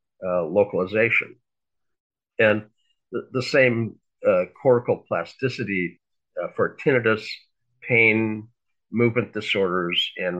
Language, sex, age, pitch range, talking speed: English, male, 50-69, 100-125 Hz, 90 wpm